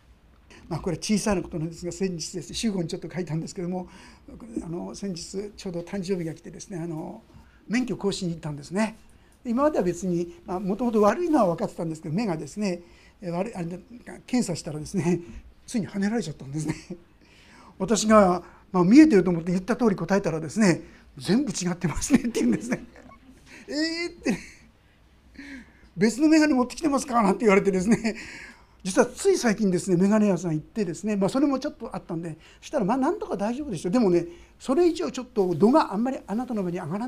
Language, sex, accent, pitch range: Japanese, male, native, 175-230 Hz